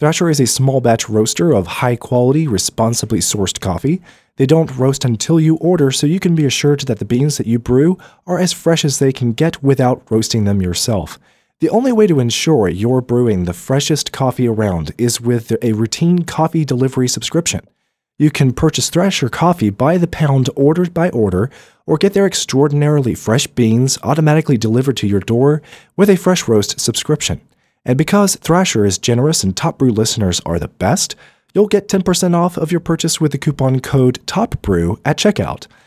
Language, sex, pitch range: English, male, 115-160 Hz